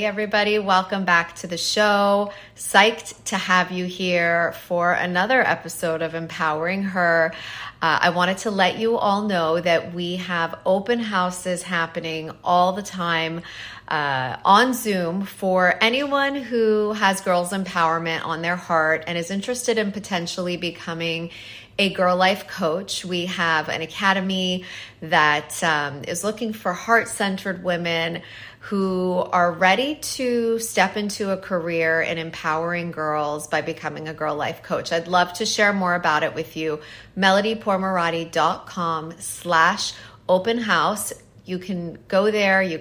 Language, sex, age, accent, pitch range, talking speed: English, female, 30-49, American, 165-195 Hz, 145 wpm